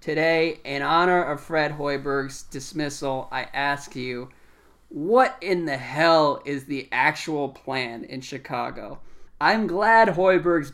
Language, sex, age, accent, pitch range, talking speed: English, male, 20-39, American, 135-175 Hz, 130 wpm